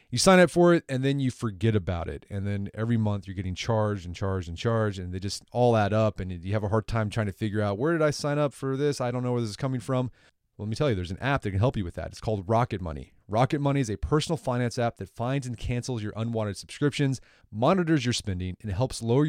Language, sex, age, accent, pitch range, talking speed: English, male, 30-49, American, 100-135 Hz, 280 wpm